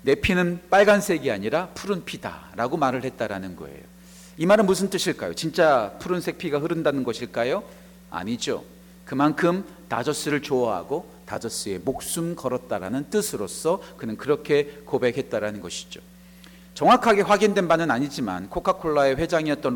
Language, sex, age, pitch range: Korean, male, 40-59, 140-185 Hz